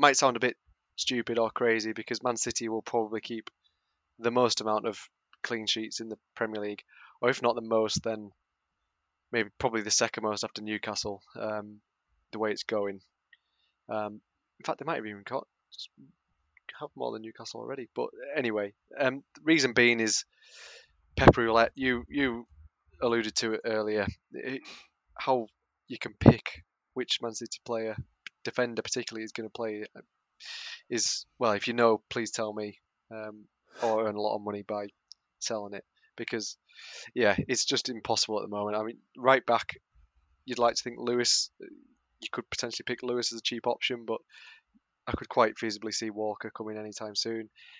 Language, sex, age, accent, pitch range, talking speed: English, male, 20-39, British, 105-120 Hz, 170 wpm